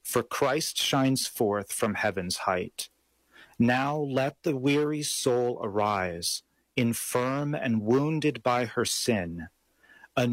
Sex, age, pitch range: male, 40-59, 105-135 Hz